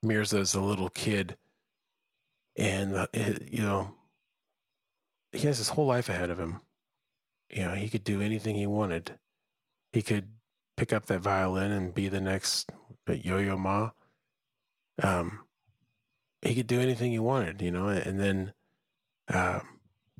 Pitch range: 95-110 Hz